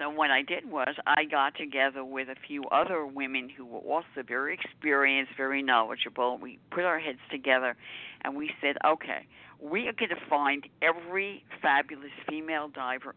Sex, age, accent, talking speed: female, 50-69, American, 175 wpm